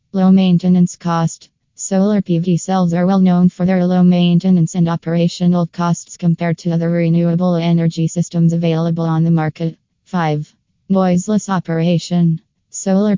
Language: English